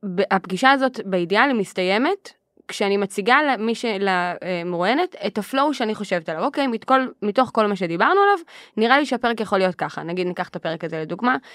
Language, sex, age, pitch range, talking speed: Hebrew, female, 20-39, 180-240 Hz, 170 wpm